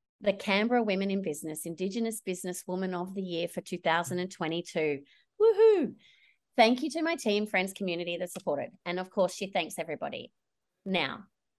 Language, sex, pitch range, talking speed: English, female, 170-215 Hz, 150 wpm